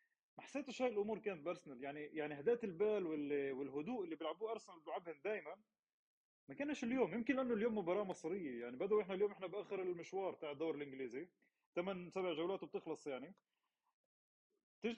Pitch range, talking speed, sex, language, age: 160-220 Hz, 160 wpm, male, Arabic, 30-49